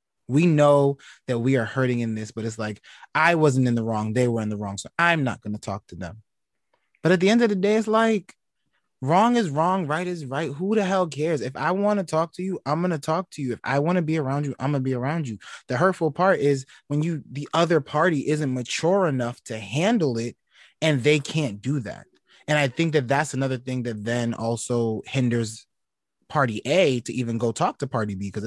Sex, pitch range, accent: male, 115-160 Hz, American